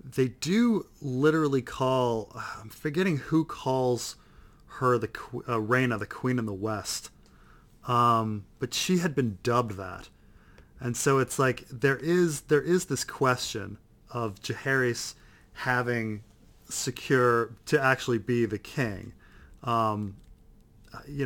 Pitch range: 110-130 Hz